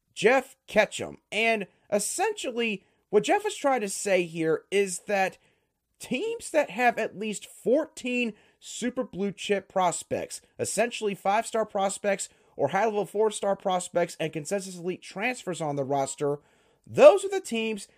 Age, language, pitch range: 30-49, English, 175-225 Hz